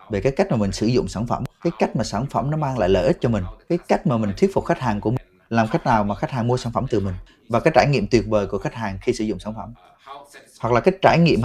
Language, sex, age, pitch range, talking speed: Vietnamese, male, 20-39, 110-160 Hz, 320 wpm